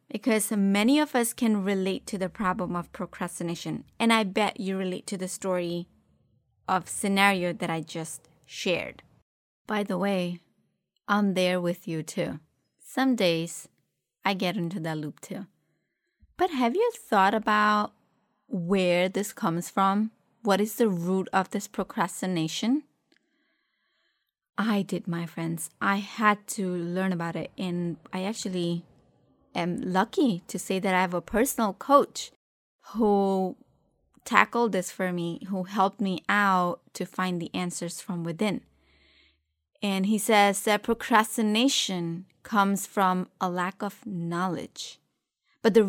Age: 20-39